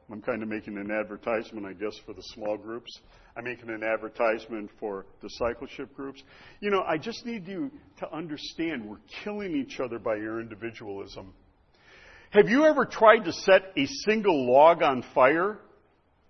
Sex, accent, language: male, American, English